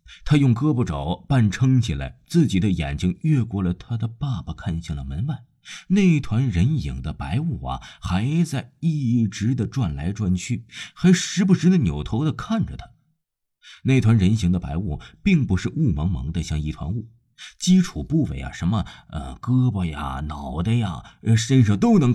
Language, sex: Chinese, male